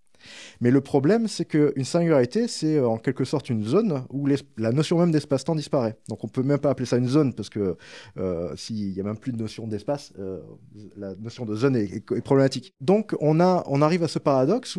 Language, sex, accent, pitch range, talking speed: French, male, French, 120-165 Hz, 225 wpm